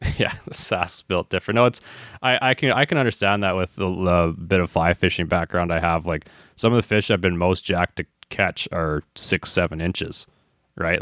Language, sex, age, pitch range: English, male, 20-39, 85-95 Hz